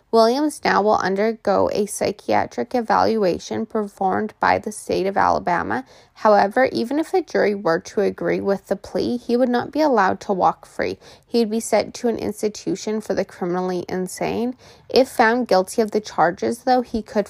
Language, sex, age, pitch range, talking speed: English, female, 20-39, 190-235 Hz, 180 wpm